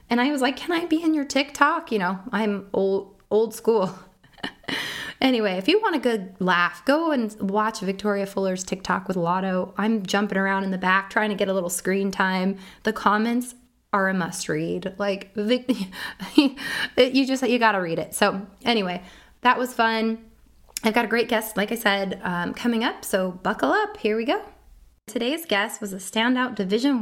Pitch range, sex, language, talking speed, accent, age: 195-255 Hz, female, English, 185 wpm, American, 20-39